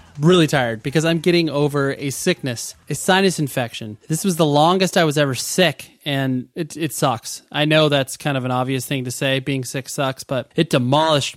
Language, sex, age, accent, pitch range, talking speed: English, male, 20-39, American, 140-180 Hz, 205 wpm